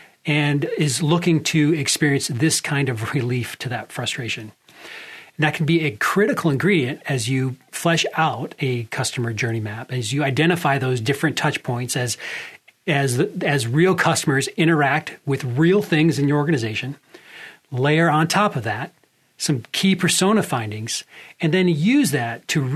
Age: 40-59